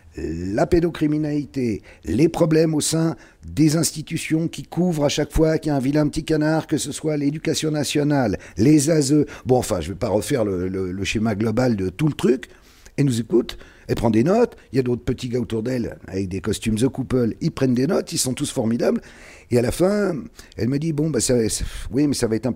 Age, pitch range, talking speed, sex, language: 50-69, 95-155 Hz, 230 wpm, male, French